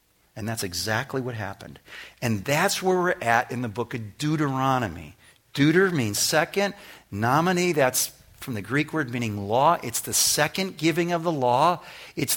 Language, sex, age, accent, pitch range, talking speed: English, male, 50-69, American, 125-170 Hz, 165 wpm